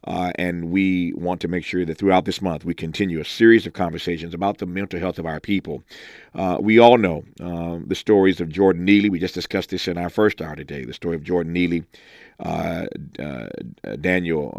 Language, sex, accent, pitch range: English, male, American, 85-95 Hz